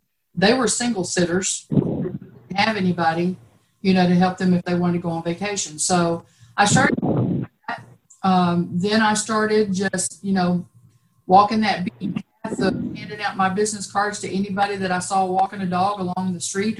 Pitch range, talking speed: 180-210 Hz, 170 wpm